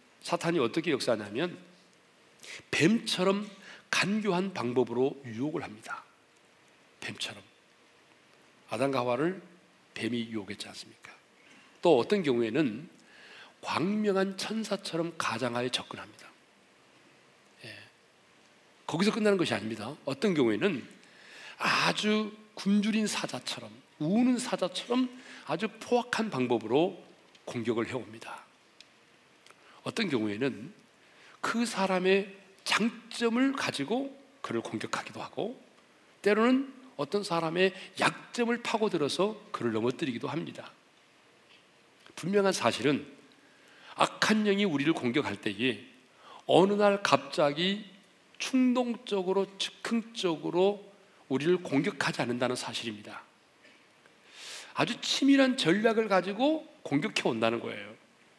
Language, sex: Korean, male